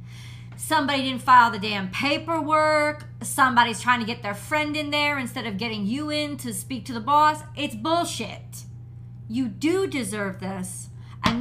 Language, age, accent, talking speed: English, 30-49, American, 165 wpm